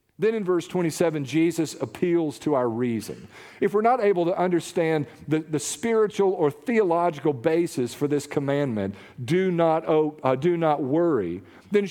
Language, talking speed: English, 150 wpm